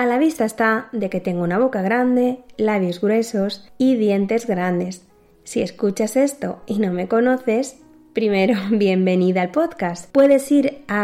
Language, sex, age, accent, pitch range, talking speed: Spanish, female, 20-39, Spanish, 190-245 Hz, 160 wpm